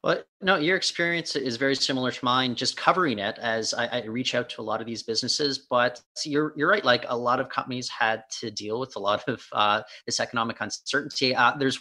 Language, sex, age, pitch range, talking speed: English, male, 30-49, 120-155 Hz, 230 wpm